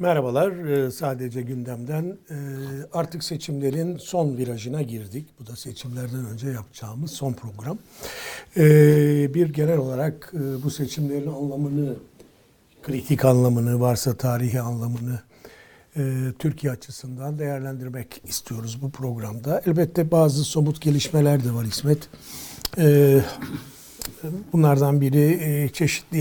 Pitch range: 130-155 Hz